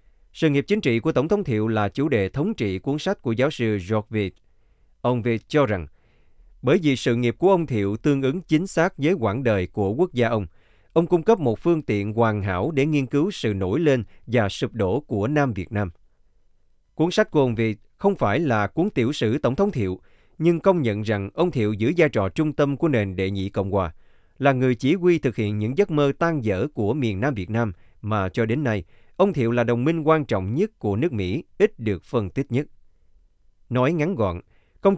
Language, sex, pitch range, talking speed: Vietnamese, male, 105-150 Hz, 230 wpm